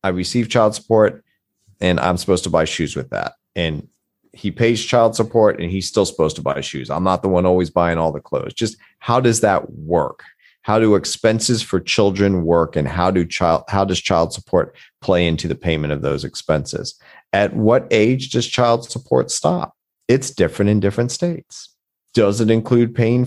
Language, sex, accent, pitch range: English, male, American, 85-110 Hz